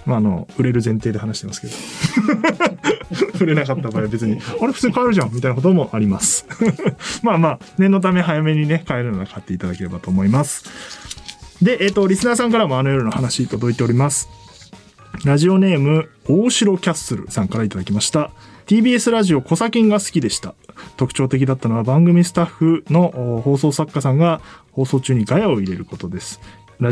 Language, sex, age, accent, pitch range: Japanese, male, 20-39, native, 115-165 Hz